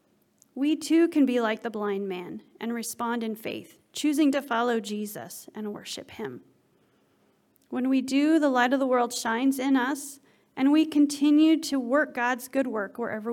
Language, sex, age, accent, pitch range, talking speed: English, female, 30-49, American, 220-280 Hz, 175 wpm